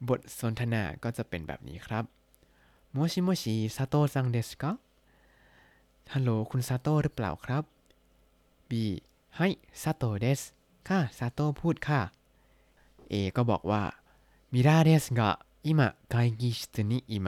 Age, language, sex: 20-39, Thai, male